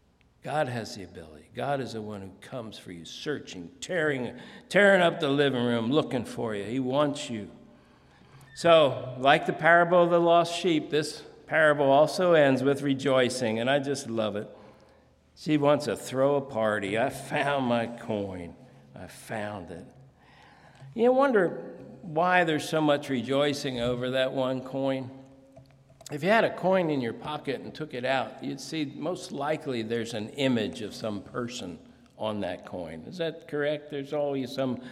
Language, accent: English, American